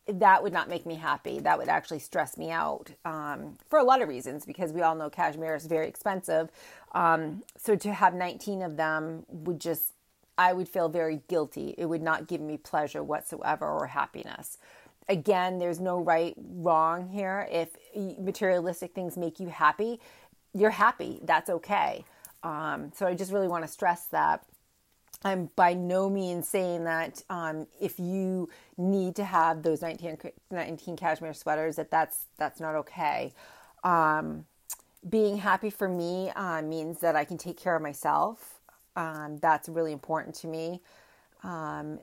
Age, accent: 40-59, American